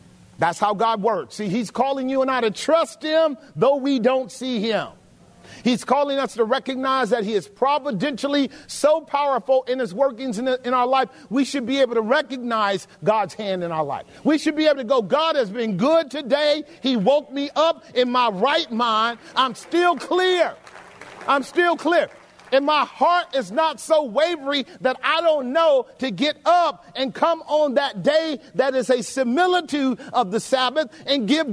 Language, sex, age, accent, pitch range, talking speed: English, male, 40-59, American, 245-310 Hz, 190 wpm